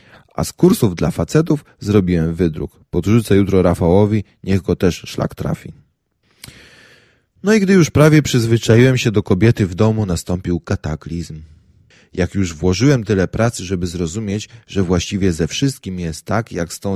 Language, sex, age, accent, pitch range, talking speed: Polish, male, 30-49, native, 90-115 Hz, 155 wpm